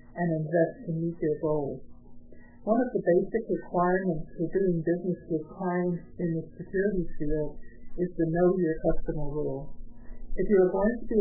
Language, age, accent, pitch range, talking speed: English, 60-79, American, 160-185 Hz, 170 wpm